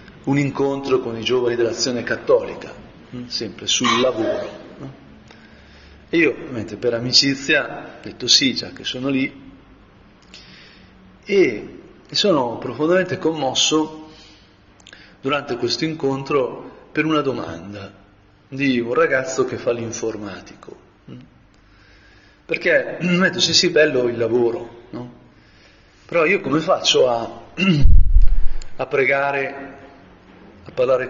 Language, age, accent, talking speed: Italian, 40-59, native, 105 wpm